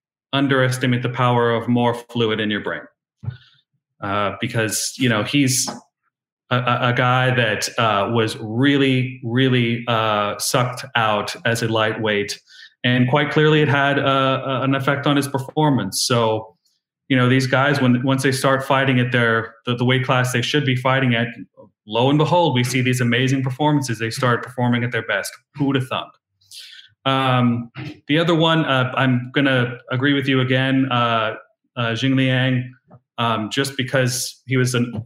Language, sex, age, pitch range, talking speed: English, male, 30-49, 120-135 Hz, 170 wpm